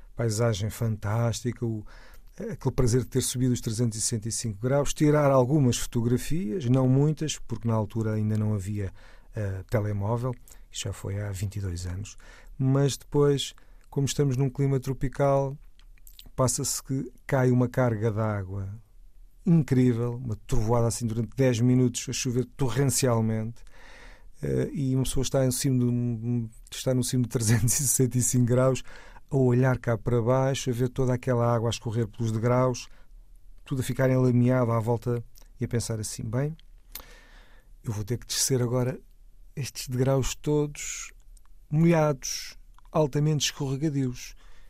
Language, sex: Portuguese, male